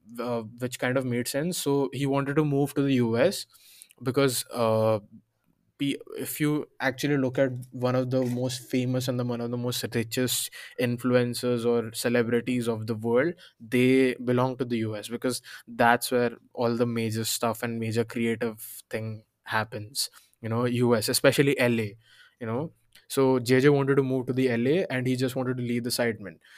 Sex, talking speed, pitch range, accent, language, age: male, 175 wpm, 115-135 Hz, Indian, English, 20-39